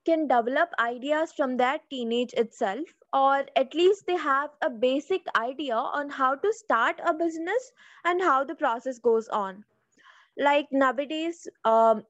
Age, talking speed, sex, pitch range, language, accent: 20-39, 150 wpm, female, 255-345 Hz, English, Indian